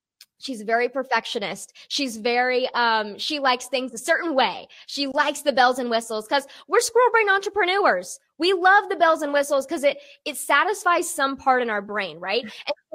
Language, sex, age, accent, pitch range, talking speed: English, female, 20-39, American, 250-345 Hz, 185 wpm